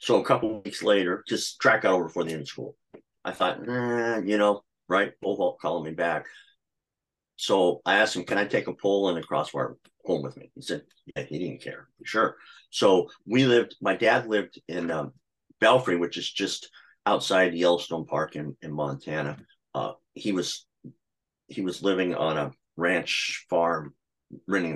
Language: English